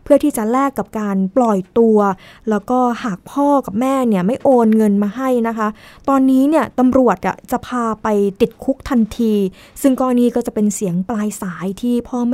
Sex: female